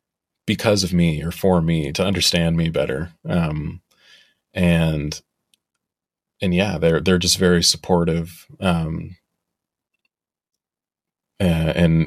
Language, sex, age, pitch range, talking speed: English, male, 30-49, 85-105 Hz, 105 wpm